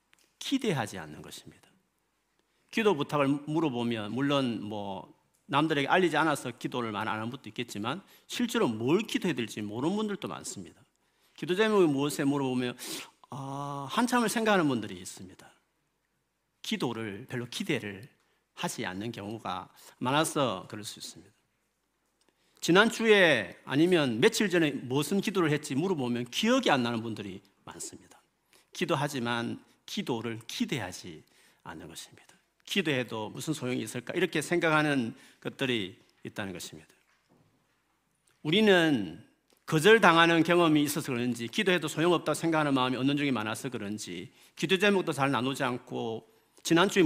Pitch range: 120-175 Hz